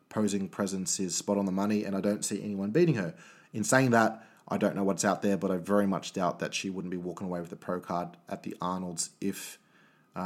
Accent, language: Australian, English